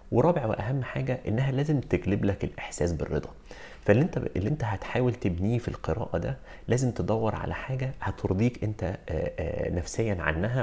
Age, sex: 30-49, male